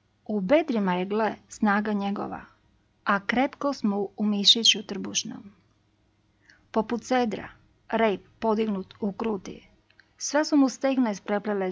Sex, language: female, Croatian